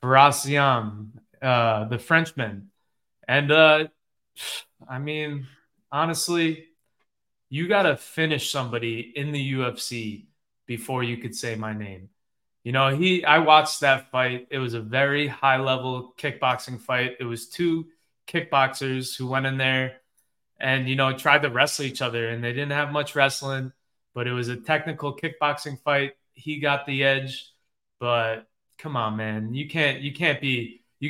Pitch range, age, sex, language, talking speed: 125-150 Hz, 20-39, male, English, 150 wpm